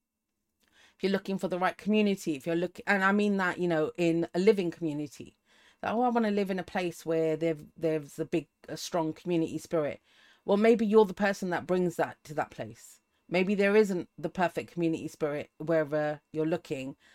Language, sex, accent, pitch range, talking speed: English, female, British, 155-195 Hz, 205 wpm